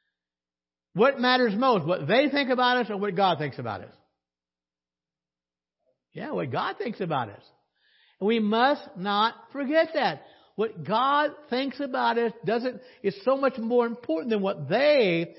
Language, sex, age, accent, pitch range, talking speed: English, male, 60-79, American, 160-255 Hz, 155 wpm